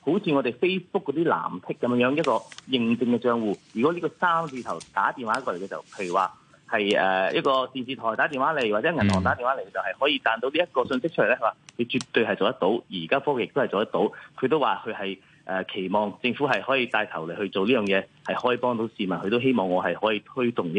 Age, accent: 30-49, native